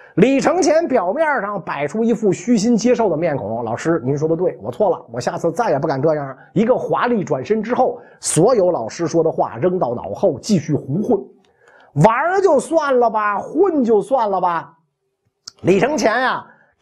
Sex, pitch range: male, 175-275 Hz